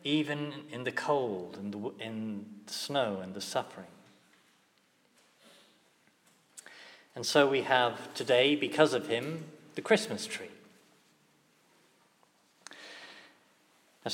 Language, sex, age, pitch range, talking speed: English, male, 40-59, 135-160 Hz, 100 wpm